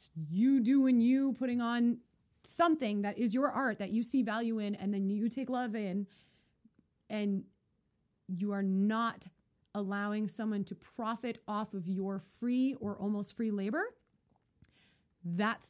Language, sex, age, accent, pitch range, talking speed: English, female, 30-49, American, 195-230 Hz, 145 wpm